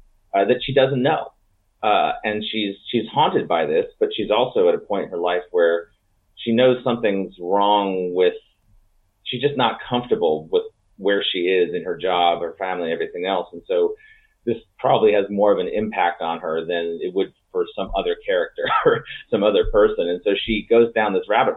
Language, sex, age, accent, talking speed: English, male, 30-49, American, 200 wpm